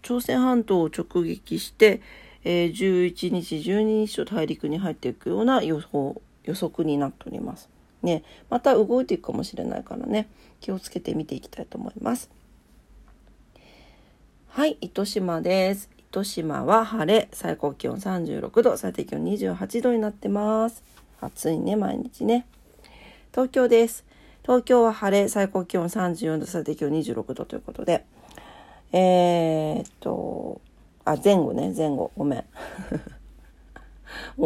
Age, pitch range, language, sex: 40-59, 170-230 Hz, Japanese, female